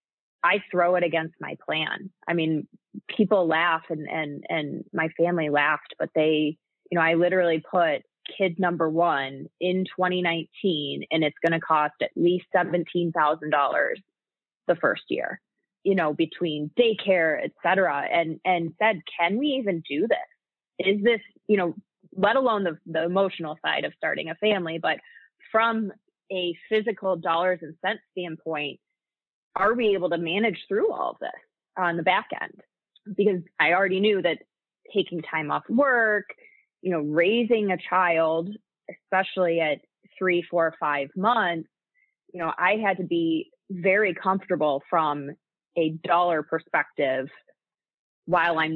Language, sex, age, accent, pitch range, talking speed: English, female, 20-39, American, 160-195 Hz, 150 wpm